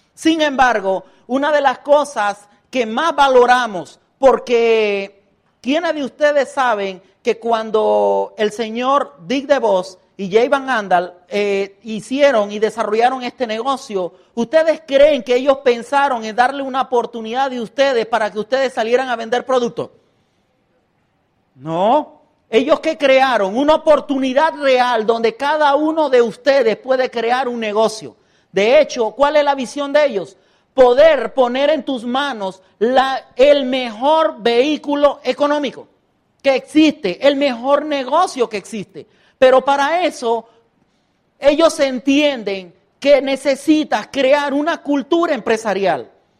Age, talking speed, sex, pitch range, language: 40-59, 130 wpm, male, 225-285 Hz, Spanish